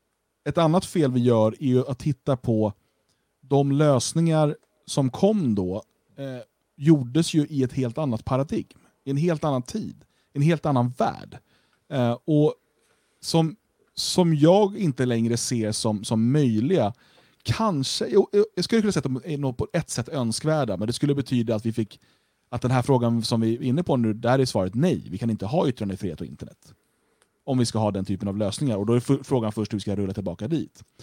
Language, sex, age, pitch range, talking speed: Swedish, male, 30-49, 110-145 Hz, 195 wpm